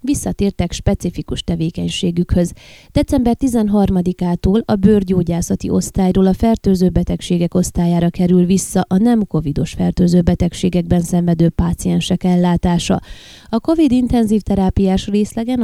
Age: 20-39